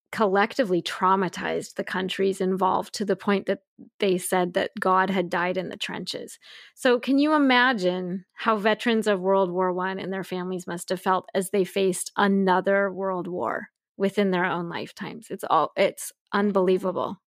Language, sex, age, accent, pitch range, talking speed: English, female, 20-39, American, 185-205 Hz, 165 wpm